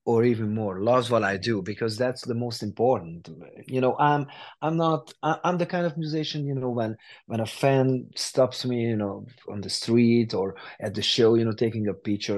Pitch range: 105-135 Hz